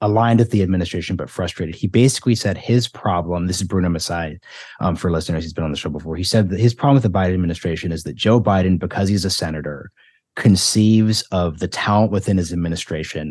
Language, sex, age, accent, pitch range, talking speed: English, male, 30-49, American, 90-120 Hz, 215 wpm